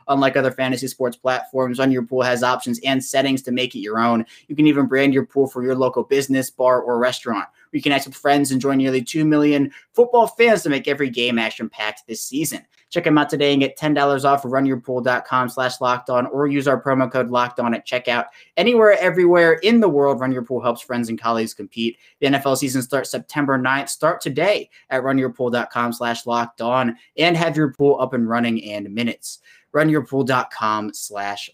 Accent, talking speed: American, 210 wpm